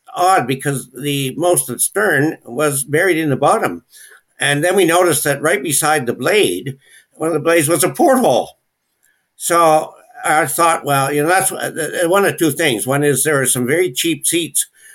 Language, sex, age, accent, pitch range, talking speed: English, male, 60-79, American, 125-160 Hz, 190 wpm